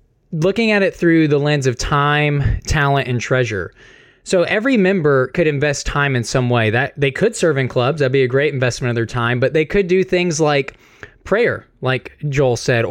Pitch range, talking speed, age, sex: 130-165 Hz, 205 wpm, 20-39, male